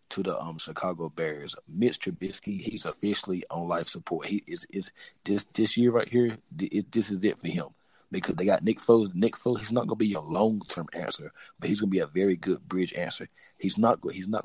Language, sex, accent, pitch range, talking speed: English, male, American, 95-110 Hz, 220 wpm